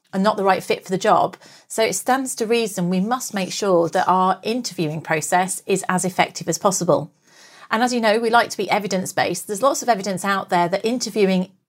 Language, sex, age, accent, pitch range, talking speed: English, female, 40-59, British, 180-230 Hz, 225 wpm